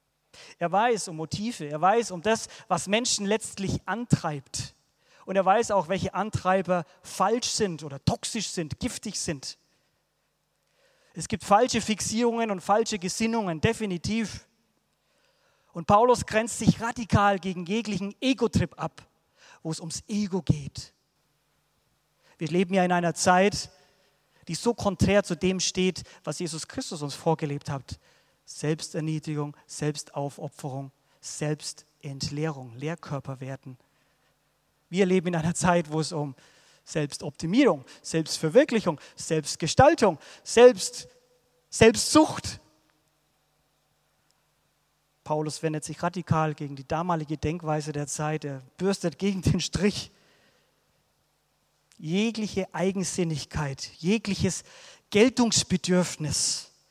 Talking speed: 105 wpm